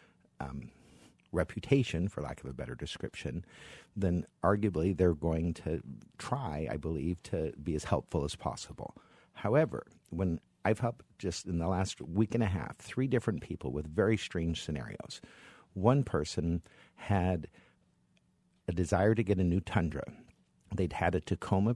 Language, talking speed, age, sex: English, 150 wpm, 50-69, male